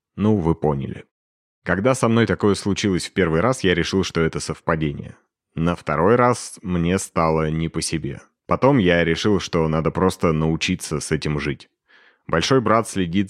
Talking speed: 165 wpm